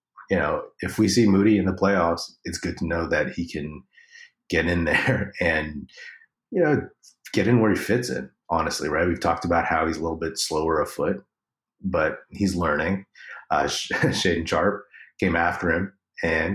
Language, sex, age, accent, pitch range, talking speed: English, male, 30-49, American, 80-100 Hz, 180 wpm